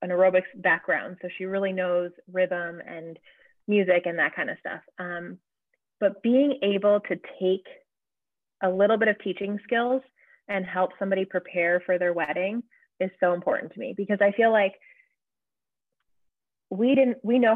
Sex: female